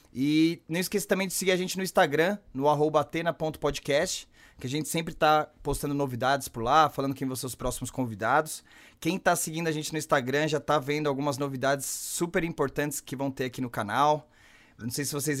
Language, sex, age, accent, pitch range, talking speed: Portuguese, male, 20-39, Brazilian, 135-160 Hz, 210 wpm